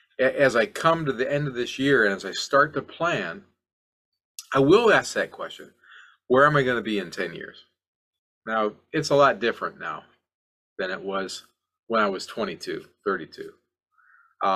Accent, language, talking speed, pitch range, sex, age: American, English, 175 wpm, 130-210 Hz, male, 40-59